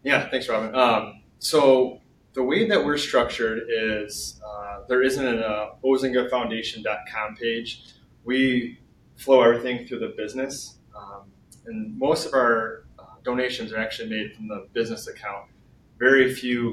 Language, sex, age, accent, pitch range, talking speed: English, male, 20-39, American, 110-130 Hz, 145 wpm